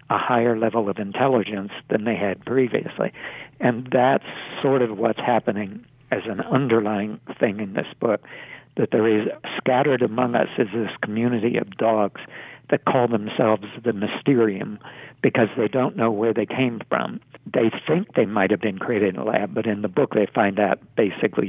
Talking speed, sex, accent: 180 wpm, male, American